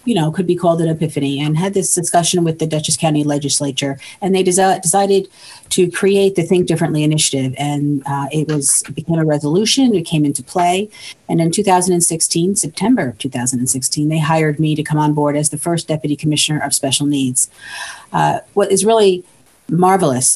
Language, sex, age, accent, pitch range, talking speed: English, female, 40-59, American, 145-185 Hz, 190 wpm